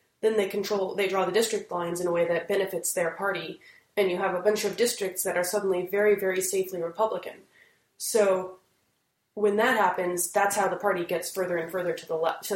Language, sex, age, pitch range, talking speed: English, female, 20-39, 175-200 Hz, 215 wpm